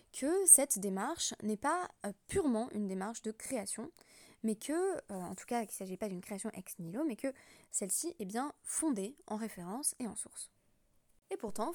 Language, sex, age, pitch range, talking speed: French, female, 20-39, 195-255 Hz, 190 wpm